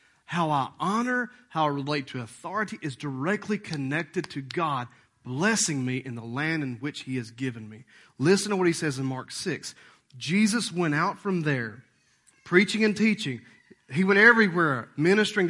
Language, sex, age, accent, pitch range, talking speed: English, male, 40-59, American, 140-205 Hz, 170 wpm